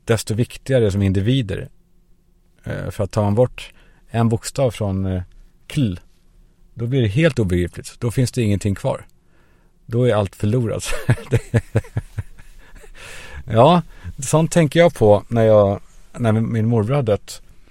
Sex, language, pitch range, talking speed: male, Swedish, 95-125 Hz, 125 wpm